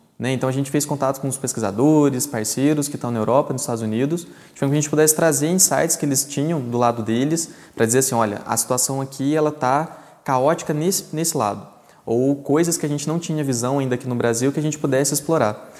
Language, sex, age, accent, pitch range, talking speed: Portuguese, male, 20-39, Brazilian, 130-160 Hz, 230 wpm